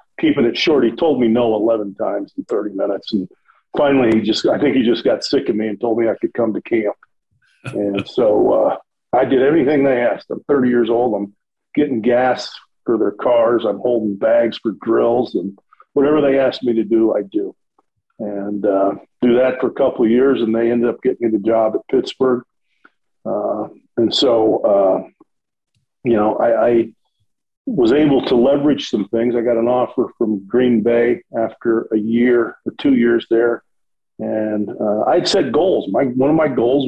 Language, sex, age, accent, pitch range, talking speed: English, male, 50-69, American, 110-125 Hz, 195 wpm